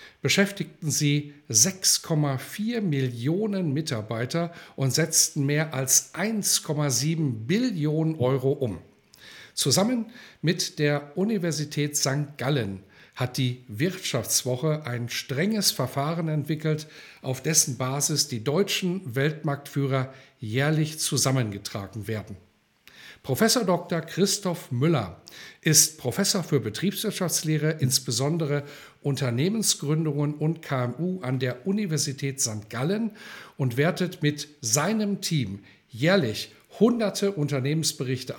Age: 10-29